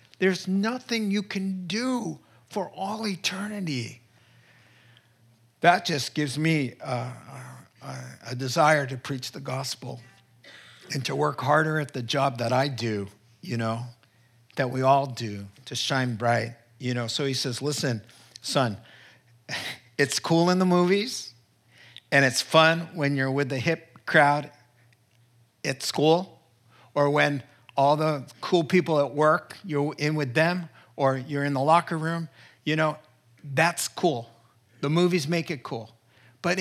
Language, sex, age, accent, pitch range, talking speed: English, male, 50-69, American, 120-160 Hz, 145 wpm